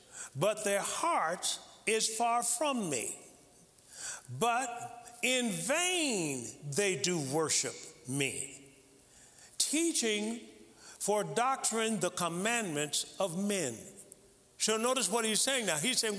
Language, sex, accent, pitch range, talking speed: English, male, American, 180-255 Hz, 110 wpm